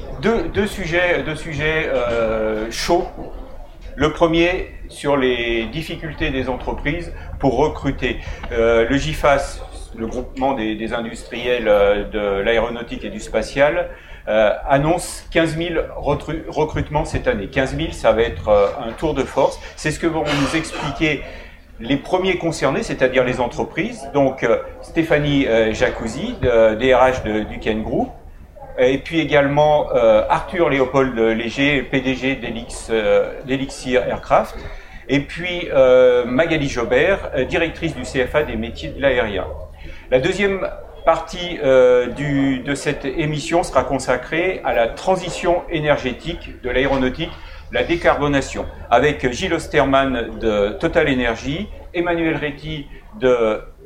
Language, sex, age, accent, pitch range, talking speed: French, male, 40-59, French, 115-160 Hz, 130 wpm